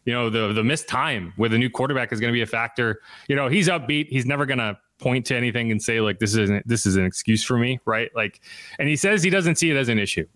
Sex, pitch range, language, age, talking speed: male, 115-145 Hz, English, 30-49, 295 wpm